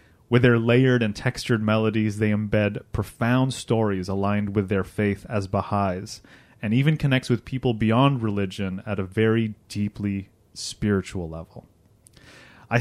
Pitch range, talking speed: 105-125 Hz, 140 wpm